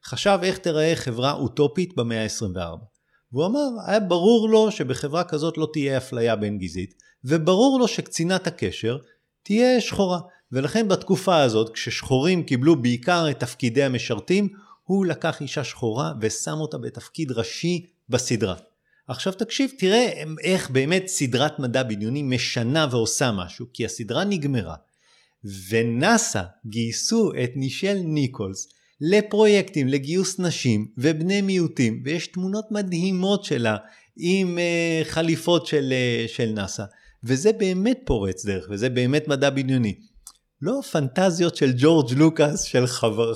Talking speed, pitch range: 125 wpm, 120-180 Hz